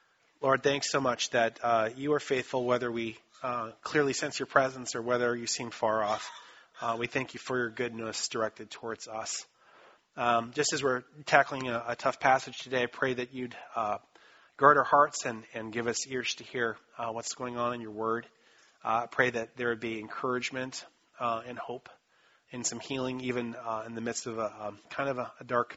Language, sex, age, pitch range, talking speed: English, male, 30-49, 115-135 Hz, 210 wpm